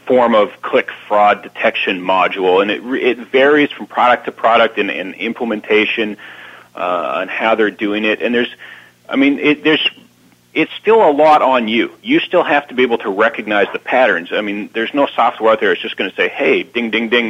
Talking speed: 210 wpm